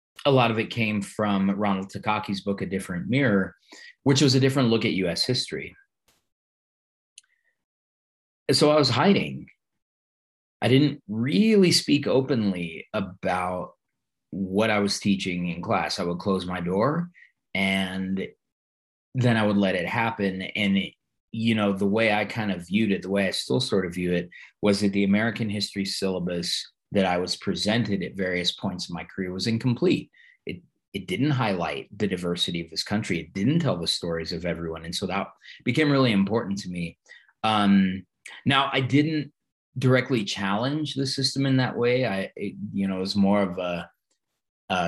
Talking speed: 170 wpm